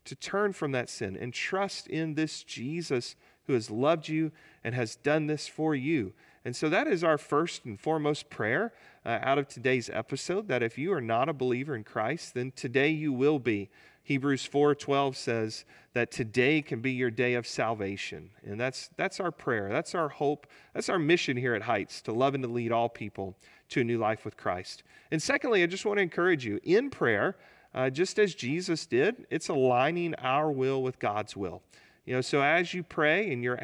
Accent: American